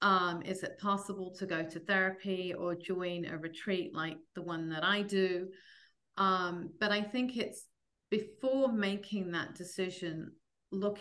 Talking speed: 155 wpm